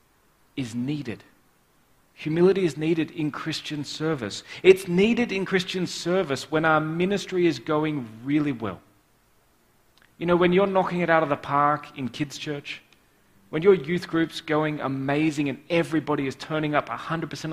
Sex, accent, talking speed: male, Australian, 155 wpm